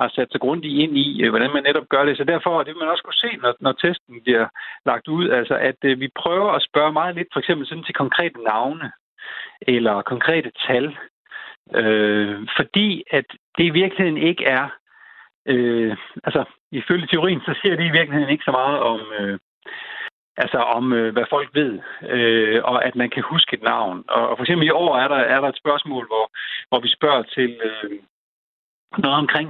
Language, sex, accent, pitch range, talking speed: Danish, male, native, 115-160 Hz, 200 wpm